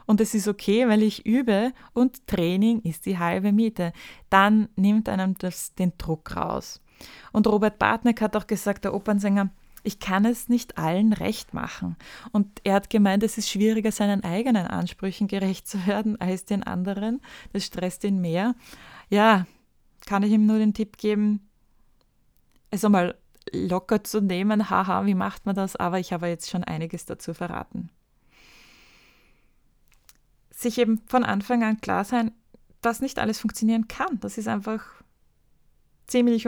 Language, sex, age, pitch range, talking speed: German, female, 20-39, 185-220 Hz, 160 wpm